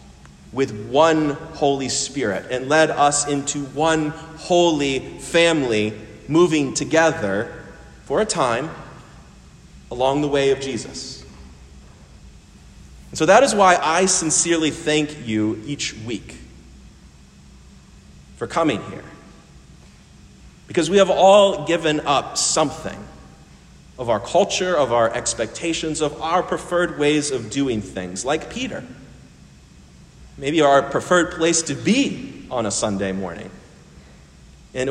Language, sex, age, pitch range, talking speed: English, male, 30-49, 100-155 Hz, 115 wpm